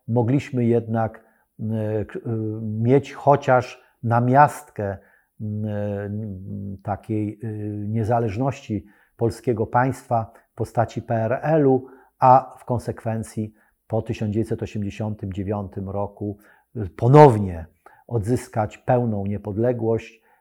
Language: Polish